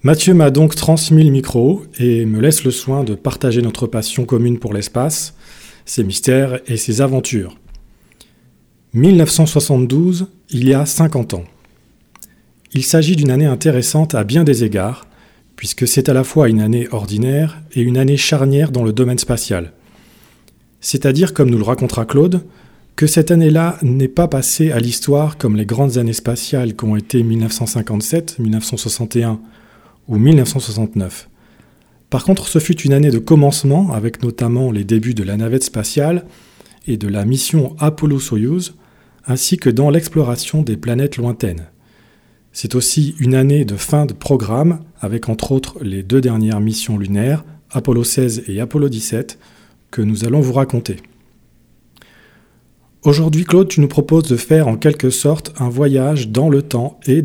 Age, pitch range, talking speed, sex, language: 40-59, 115-150 Hz, 155 wpm, male, French